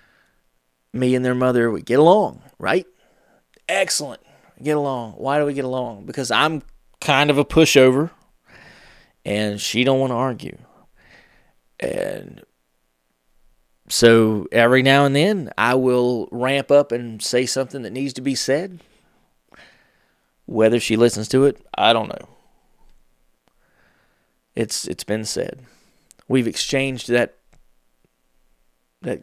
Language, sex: English, male